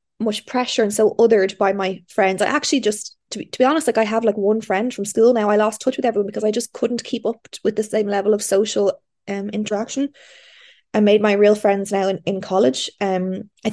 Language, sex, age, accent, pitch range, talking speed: English, female, 20-39, Irish, 190-220 Hz, 240 wpm